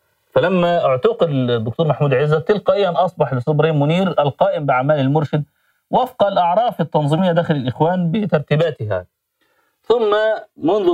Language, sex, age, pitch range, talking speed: Arabic, male, 30-49, 135-190 Hz, 115 wpm